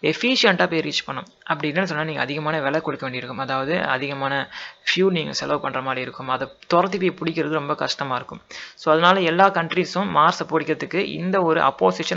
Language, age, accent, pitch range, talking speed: Tamil, 30-49, native, 140-175 Hz, 175 wpm